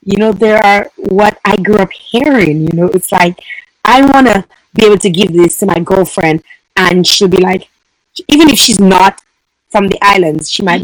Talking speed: 205 wpm